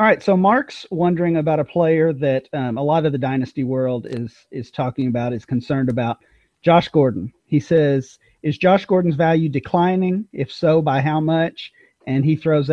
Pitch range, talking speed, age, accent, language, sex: 135-165 Hz, 190 wpm, 40-59, American, English, male